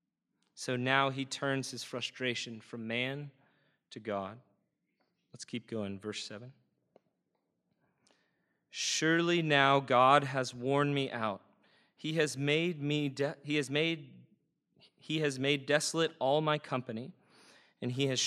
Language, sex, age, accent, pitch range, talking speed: English, male, 30-49, American, 120-145 Hz, 130 wpm